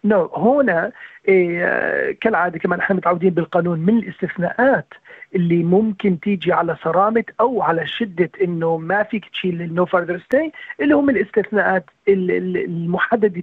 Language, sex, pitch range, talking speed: Arabic, male, 180-225 Hz, 125 wpm